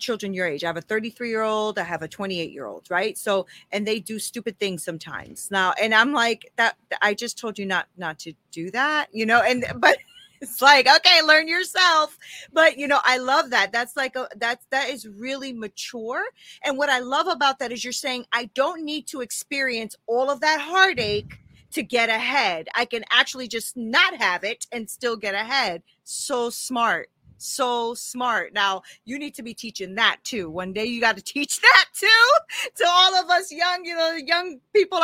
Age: 30-49